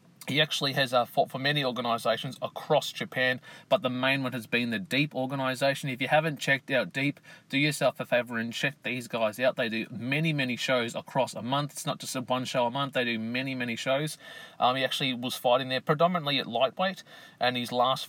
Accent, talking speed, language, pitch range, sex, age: Australian, 220 wpm, English, 120-150 Hz, male, 30-49